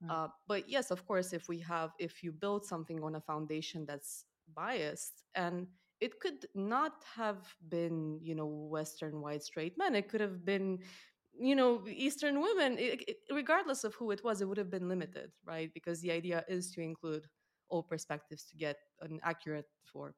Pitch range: 150-190 Hz